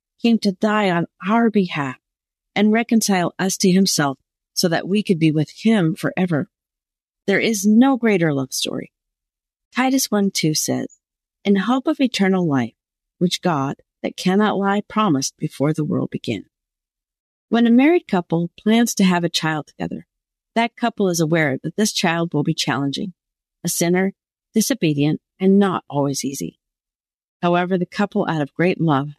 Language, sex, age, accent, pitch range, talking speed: English, female, 50-69, American, 155-205 Hz, 160 wpm